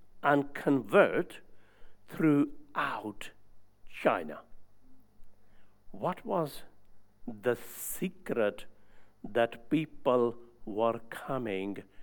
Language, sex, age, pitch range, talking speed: English, male, 60-79, 115-165 Hz, 60 wpm